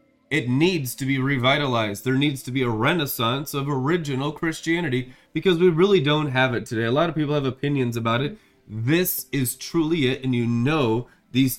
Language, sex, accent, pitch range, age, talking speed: English, male, American, 130-180 Hz, 30-49, 190 wpm